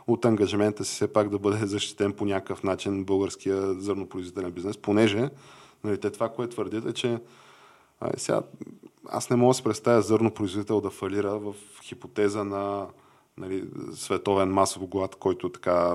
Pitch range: 95-115 Hz